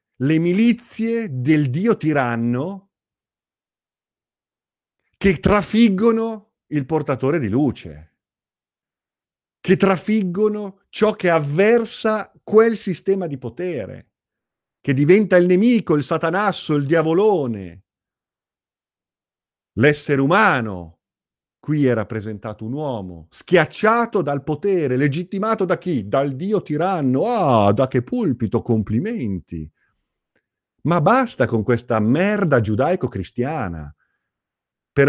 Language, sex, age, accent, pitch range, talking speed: Italian, male, 40-59, native, 120-195 Hz, 95 wpm